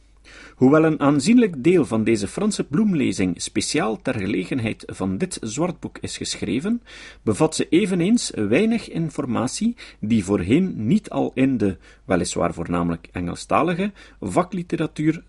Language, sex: Dutch, male